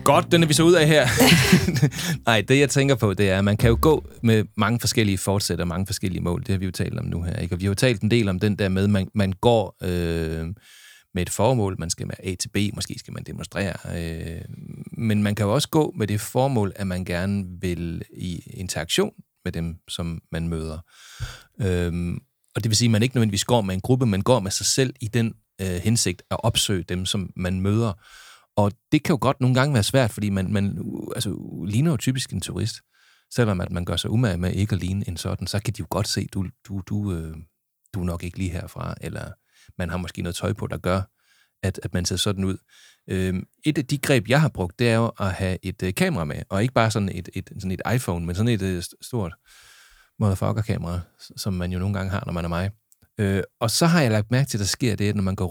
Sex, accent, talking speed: male, native, 245 wpm